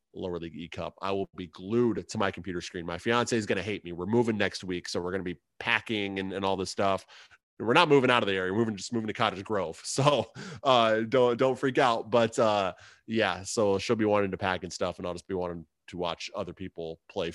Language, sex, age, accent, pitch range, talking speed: English, male, 20-39, American, 100-130 Hz, 255 wpm